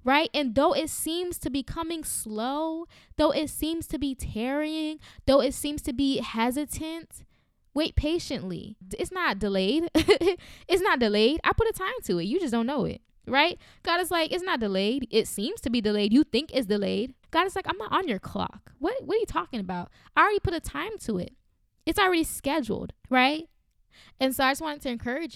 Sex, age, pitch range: female, 10-29, 215-295 Hz